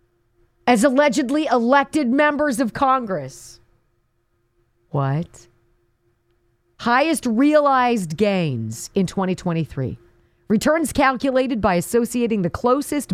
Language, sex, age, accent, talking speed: English, female, 40-59, American, 80 wpm